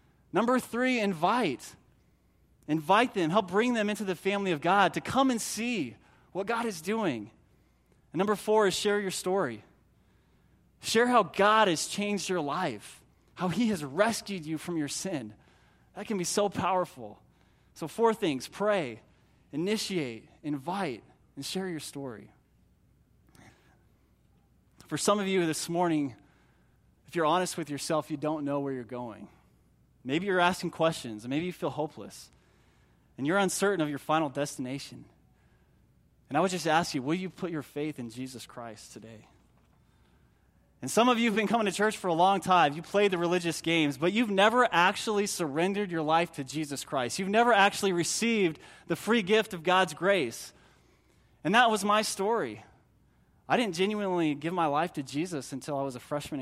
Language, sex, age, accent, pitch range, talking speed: English, male, 20-39, American, 145-205 Hz, 170 wpm